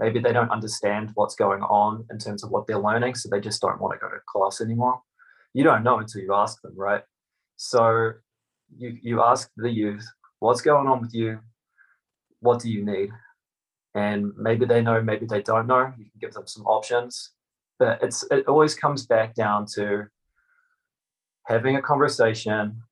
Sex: male